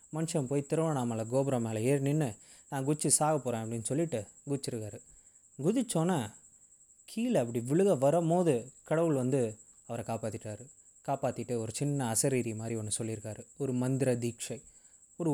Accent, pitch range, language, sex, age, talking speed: native, 115-150 Hz, Tamil, male, 20-39, 135 wpm